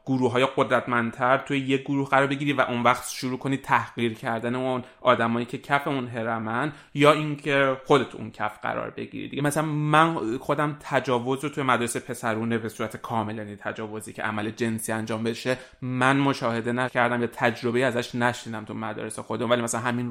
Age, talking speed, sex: 30-49, 180 wpm, male